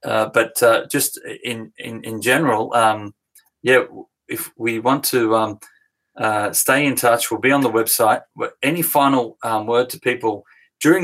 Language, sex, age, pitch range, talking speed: English, male, 30-49, 110-125 Hz, 170 wpm